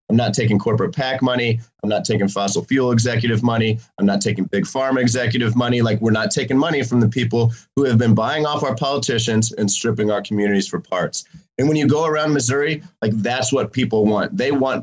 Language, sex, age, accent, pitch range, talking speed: English, male, 30-49, American, 115-140 Hz, 220 wpm